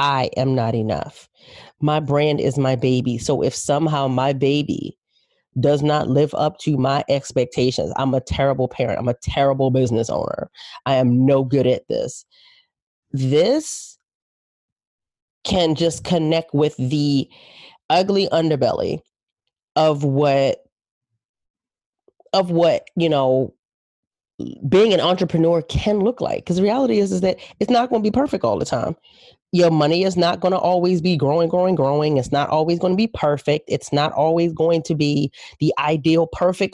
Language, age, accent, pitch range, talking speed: English, 30-49, American, 140-190 Hz, 160 wpm